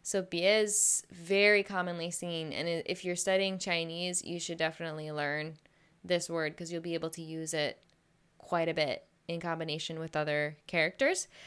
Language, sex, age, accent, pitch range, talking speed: English, female, 10-29, American, 170-205 Hz, 165 wpm